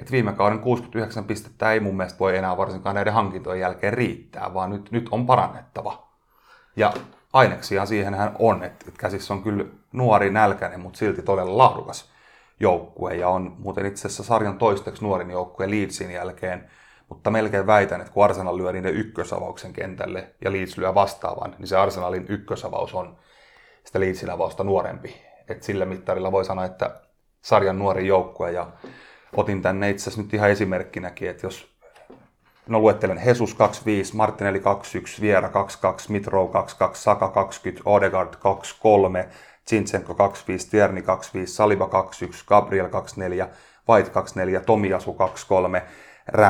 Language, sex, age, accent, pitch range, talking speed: Finnish, male, 30-49, native, 95-105 Hz, 145 wpm